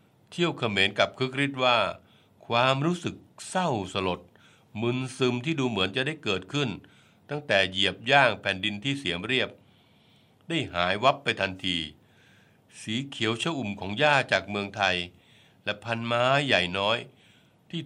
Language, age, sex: Thai, 60-79, male